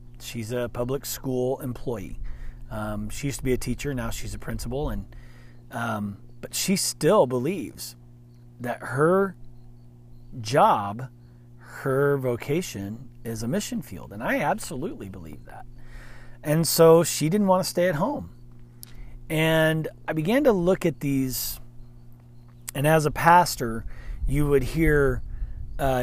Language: English